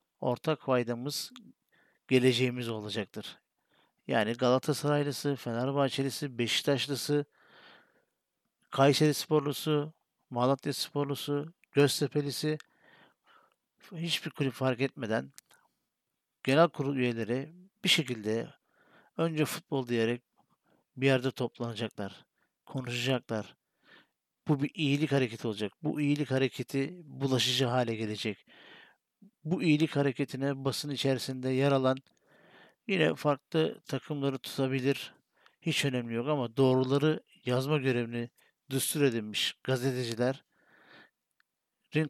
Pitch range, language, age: 125-145 Hz, Turkish, 50-69